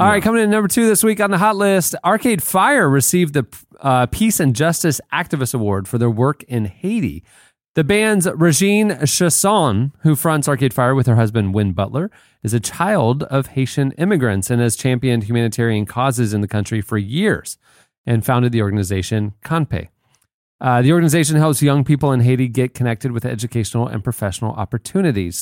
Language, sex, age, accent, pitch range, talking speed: English, male, 30-49, American, 110-150 Hz, 180 wpm